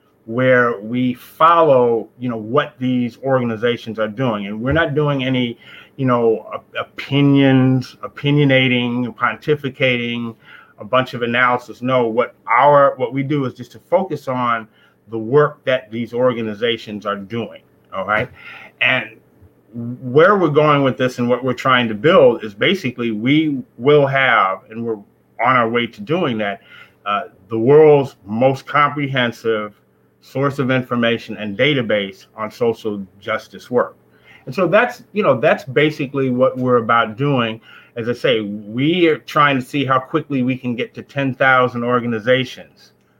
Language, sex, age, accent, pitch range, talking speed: English, male, 30-49, American, 115-135 Hz, 155 wpm